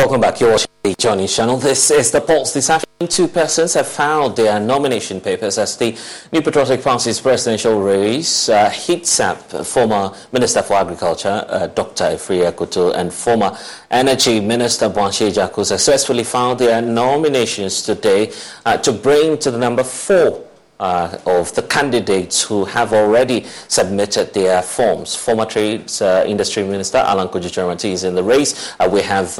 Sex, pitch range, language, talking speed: male, 100-130 Hz, English, 165 wpm